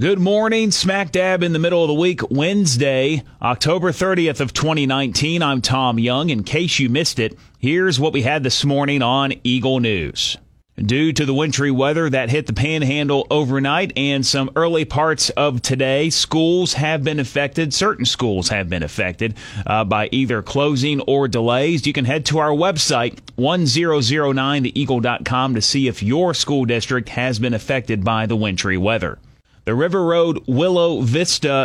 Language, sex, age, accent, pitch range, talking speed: English, male, 30-49, American, 120-155 Hz, 165 wpm